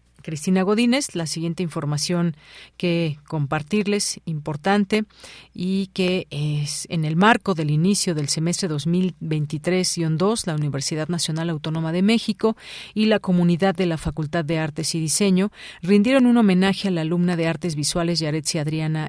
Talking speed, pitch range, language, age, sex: 145 wpm, 155-190 Hz, Spanish, 40-59, female